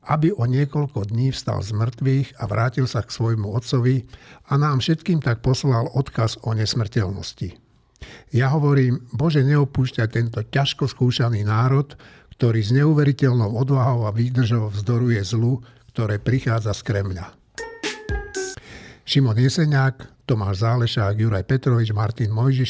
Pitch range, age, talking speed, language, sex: 115-140 Hz, 60-79, 130 wpm, Slovak, male